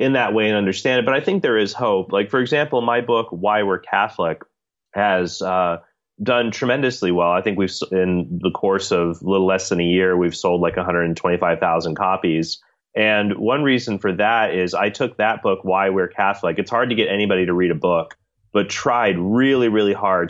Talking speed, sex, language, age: 205 wpm, male, English, 30-49